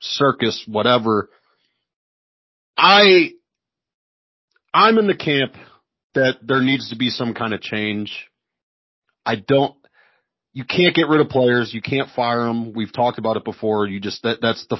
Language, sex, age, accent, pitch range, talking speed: English, male, 40-59, American, 110-130 Hz, 165 wpm